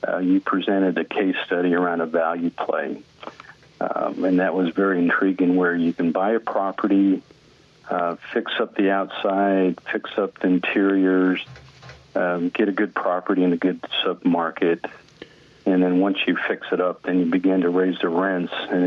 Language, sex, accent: English, male, American